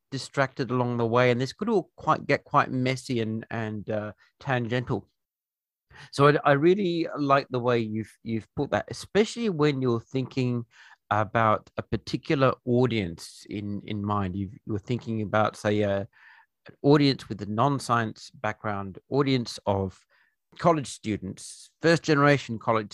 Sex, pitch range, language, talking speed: male, 110-135 Hz, English, 150 wpm